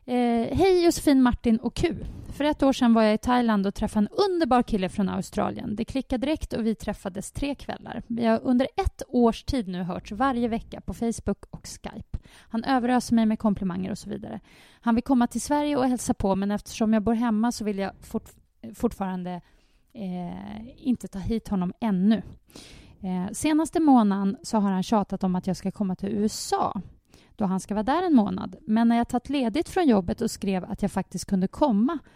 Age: 30-49